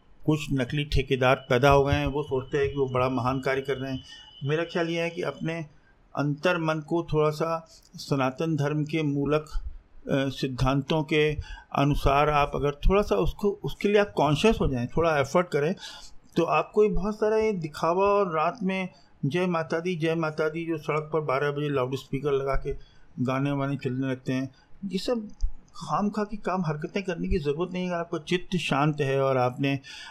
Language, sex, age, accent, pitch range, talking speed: English, male, 50-69, Indian, 140-170 Hz, 150 wpm